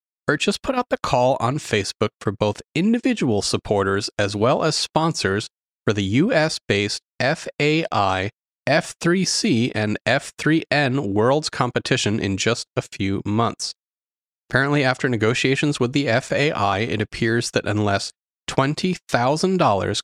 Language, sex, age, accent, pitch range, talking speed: English, male, 30-49, American, 105-140 Hz, 125 wpm